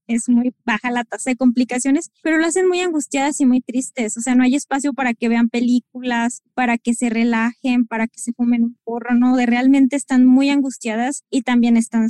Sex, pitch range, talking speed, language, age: female, 235-260 Hz, 215 wpm, Spanish, 20-39